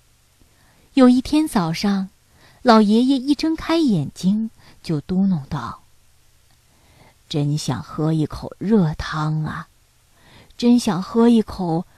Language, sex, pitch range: Chinese, female, 165-230 Hz